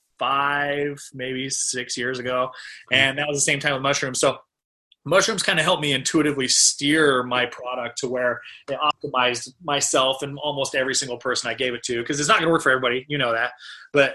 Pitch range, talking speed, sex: 125-150 Hz, 210 wpm, male